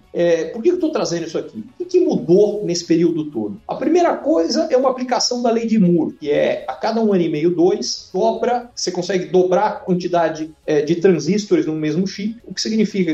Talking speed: 205 wpm